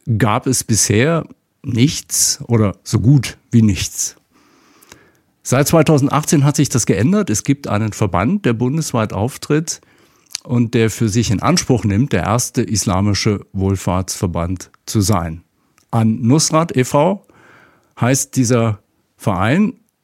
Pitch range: 105-140 Hz